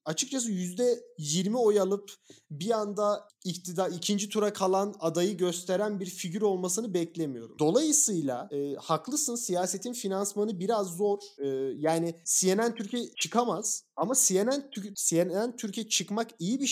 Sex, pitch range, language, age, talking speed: male, 175-235 Hz, Turkish, 30-49, 120 wpm